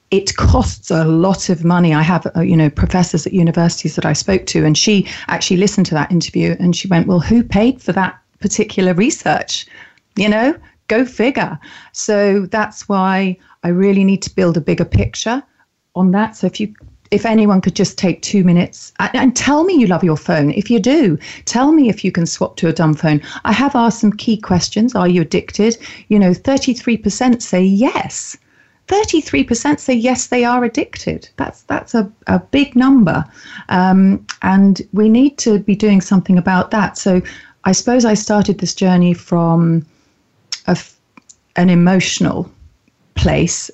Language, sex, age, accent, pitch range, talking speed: English, female, 40-59, British, 175-215 Hz, 185 wpm